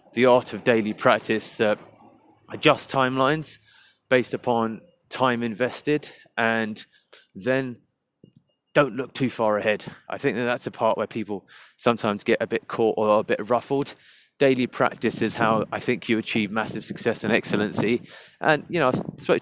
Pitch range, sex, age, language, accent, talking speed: 110-125 Hz, male, 30-49, English, British, 165 wpm